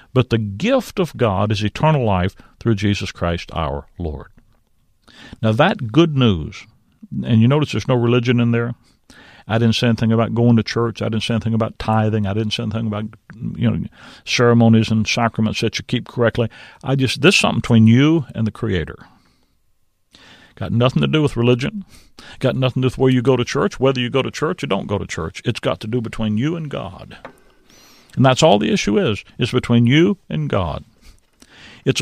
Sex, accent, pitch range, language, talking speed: male, American, 110-125 Hz, English, 205 wpm